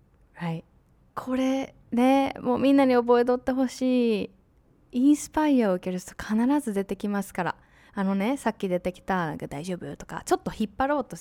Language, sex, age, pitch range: Japanese, female, 20-39, 185-255 Hz